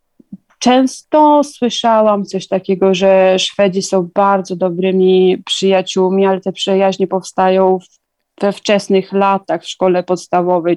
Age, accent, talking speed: 30-49, native, 110 wpm